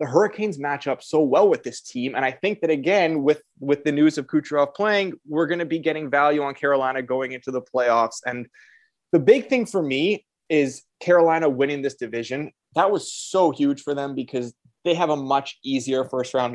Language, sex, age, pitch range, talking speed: English, male, 20-39, 125-155 Hz, 205 wpm